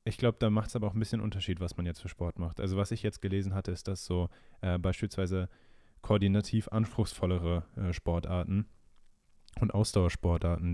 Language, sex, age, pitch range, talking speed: German, male, 20-39, 90-105 Hz, 185 wpm